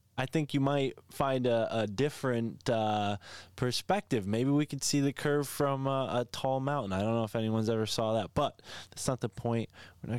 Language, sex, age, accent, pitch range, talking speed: English, male, 20-39, American, 105-130 Hz, 210 wpm